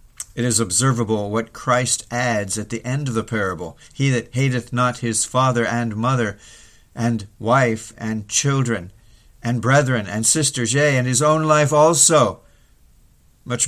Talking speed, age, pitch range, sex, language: 155 wpm, 50-69, 110-135 Hz, male, English